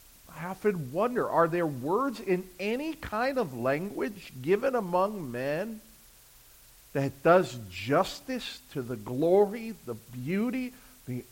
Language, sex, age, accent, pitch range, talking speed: English, male, 50-69, American, 160-210 Hz, 120 wpm